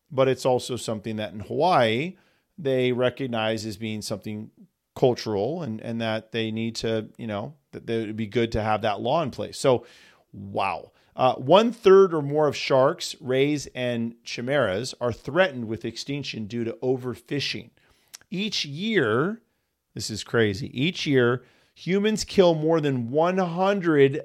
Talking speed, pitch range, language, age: 155 wpm, 115-155 Hz, English, 40-59